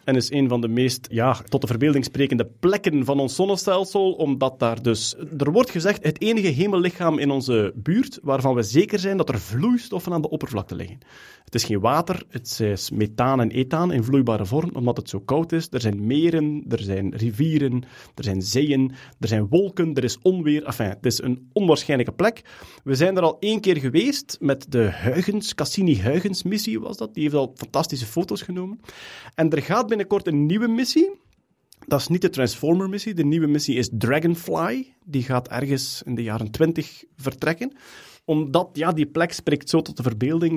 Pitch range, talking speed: 125-180 Hz, 190 wpm